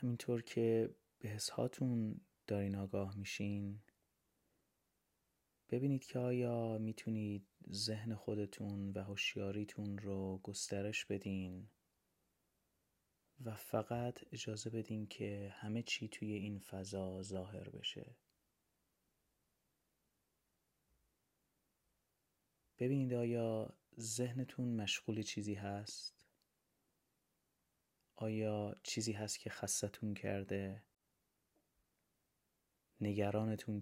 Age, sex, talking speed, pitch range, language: 30-49, male, 75 wpm, 100-115 Hz, Persian